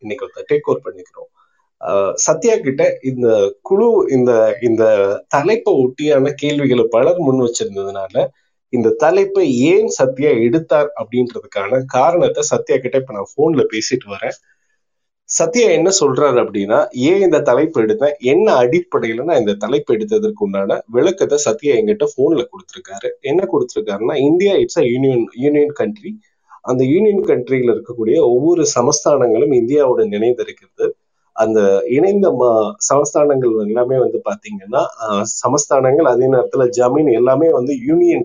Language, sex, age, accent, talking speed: Tamil, male, 30-49, native, 115 wpm